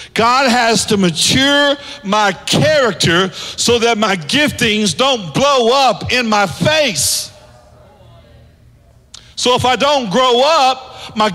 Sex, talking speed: male, 120 wpm